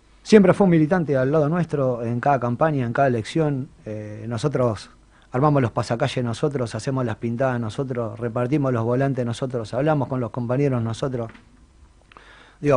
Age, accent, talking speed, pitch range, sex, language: 30-49, Argentinian, 155 wpm, 120-150 Hz, male, Spanish